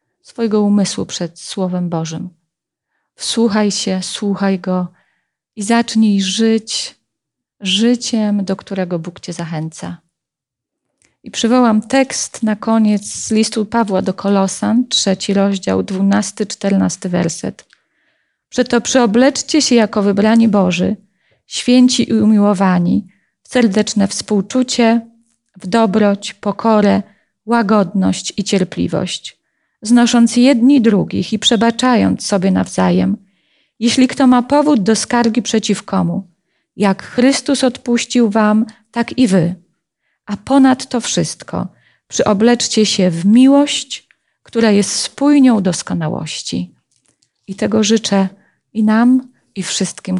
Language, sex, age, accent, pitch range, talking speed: Polish, female, 40-59, native, 185-235 Hz, 110 wpm